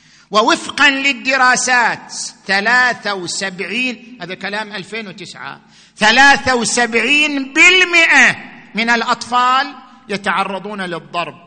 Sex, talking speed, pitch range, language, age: male, 75 wpm, 195-265 Hz, Arabic, 50-69